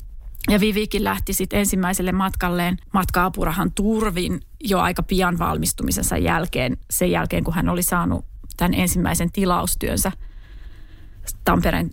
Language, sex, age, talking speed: Finnish, female, 30-49, 115 wpm